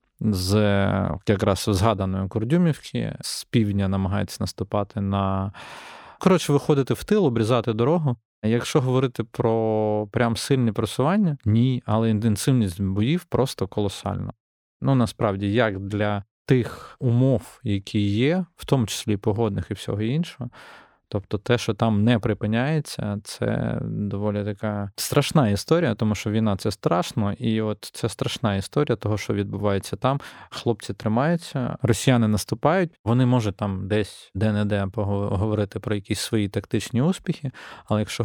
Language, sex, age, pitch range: Ukrainian, male, 20-39, 100-125 Hz